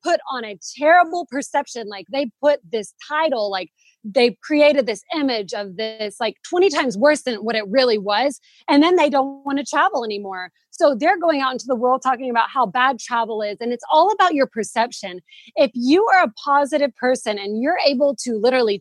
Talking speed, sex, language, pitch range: 205 wpm, female, English, 230-305 Hz